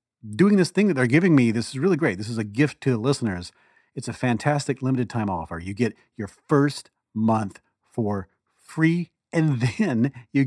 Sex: male